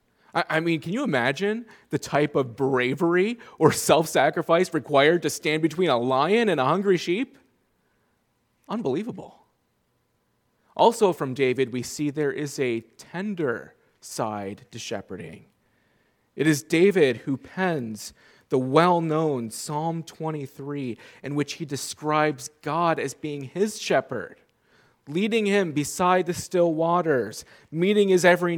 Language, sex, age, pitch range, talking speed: English, male, 30-49, 140-180 Hz, 130 wpm